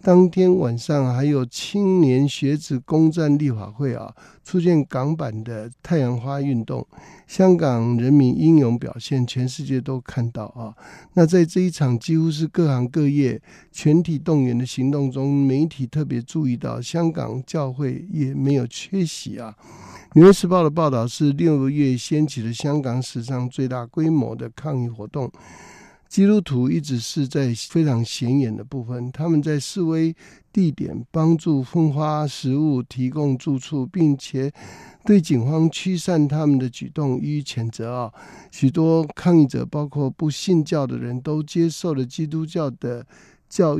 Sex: male